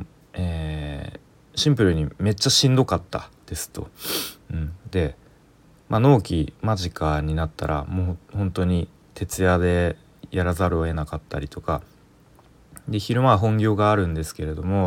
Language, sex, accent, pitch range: Japanese, male, native, 80-105 Hz